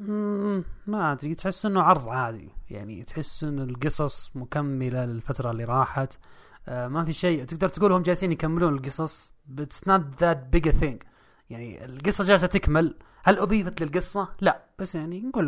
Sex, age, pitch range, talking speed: male, 20-39, 130-175 Hz, 160 wpm